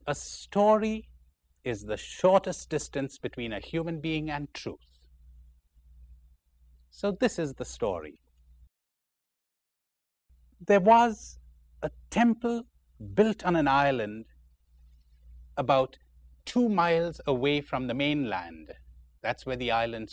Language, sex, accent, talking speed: English, male, Indian, 105 wpm